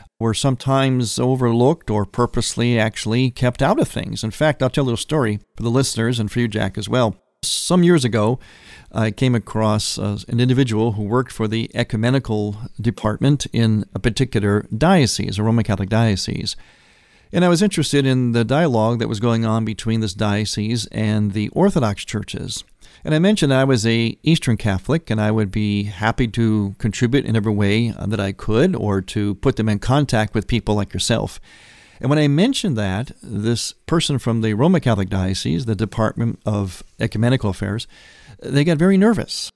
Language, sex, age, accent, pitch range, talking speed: English, male, 50-69, American, 110-140 Hz, 180 wpm